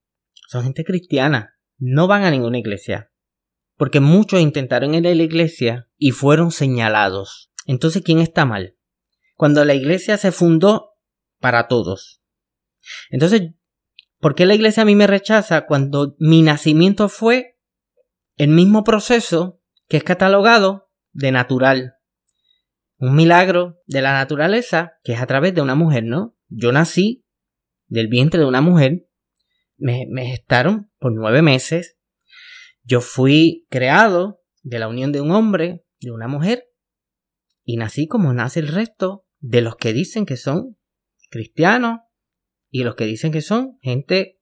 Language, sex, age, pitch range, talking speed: Spanish, male, 30-49, 130-190 Hz, 145 wpm